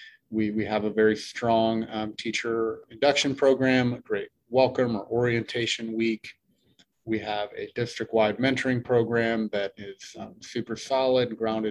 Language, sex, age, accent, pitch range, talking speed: English, male, 30-49, American, 110-130 Hz, 150 wpm